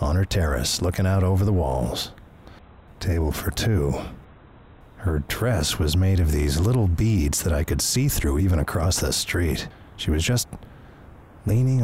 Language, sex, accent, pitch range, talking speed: English, male, American, 75-105 Hz, 160 wpm